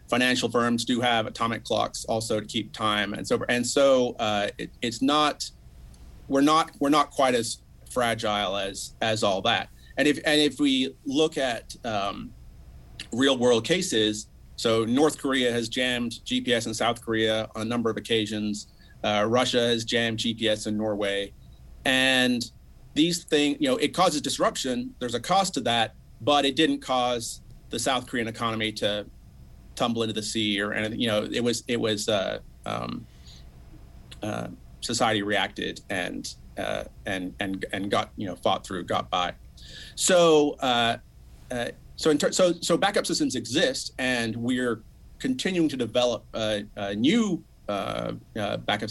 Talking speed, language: 165 wpm, English